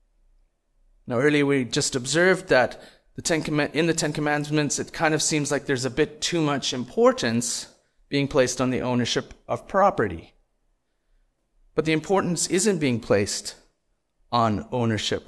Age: 30-49